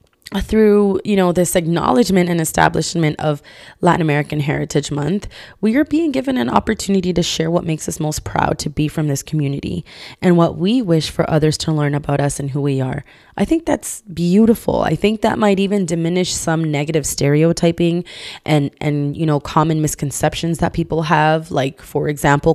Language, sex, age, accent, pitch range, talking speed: English, female, 20-39, American, 155-205 Hz, 185 wpm